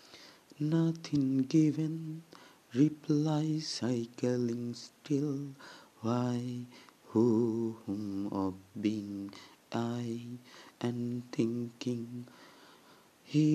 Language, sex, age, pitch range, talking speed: Bengali, male, 30-49, 110-125 Hz, 60 wpm